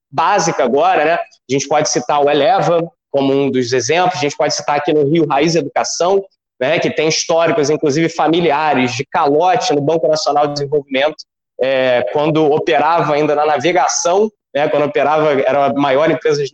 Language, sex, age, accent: Portuguese, male, 20-39, Brazilian